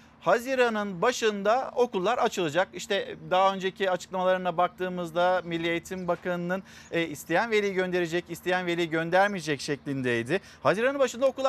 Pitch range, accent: 180-230 Hz, native